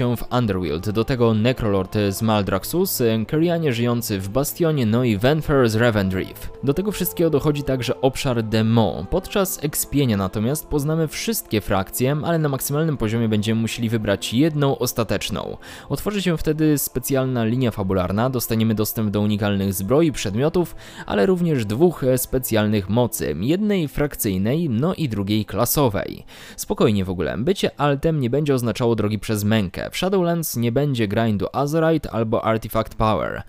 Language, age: Polish, 20-39